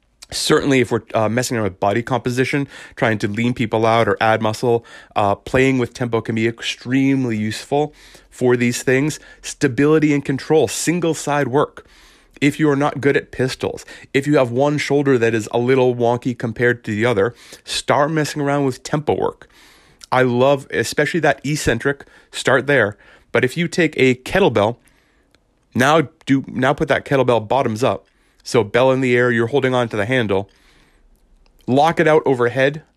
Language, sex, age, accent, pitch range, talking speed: English, male, 30-49, American, 115-145 Hz, 175 wpm